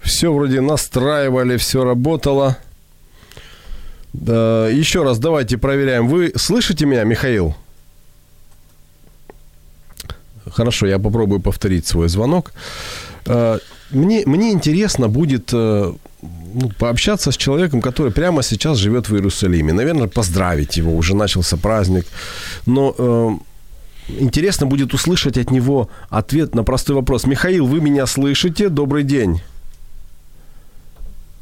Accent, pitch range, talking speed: native, 85-135 Hz, 105 wpm